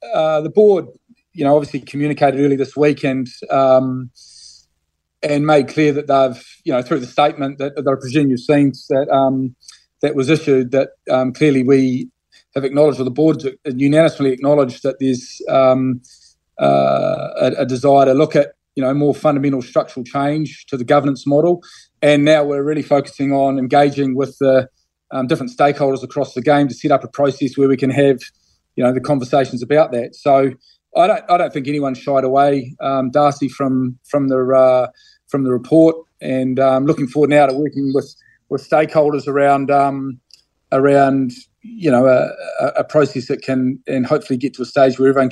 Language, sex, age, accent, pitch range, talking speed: English, male, 30-49, Australian, 130-145 Hz, 185 wpm